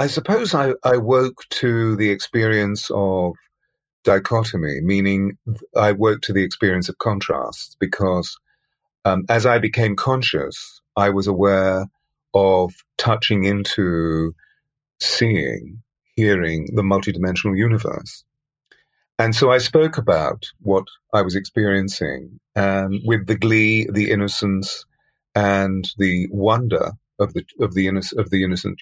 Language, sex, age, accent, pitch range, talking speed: English, male, 40-59, British, 95-120 Hz, 125 wpm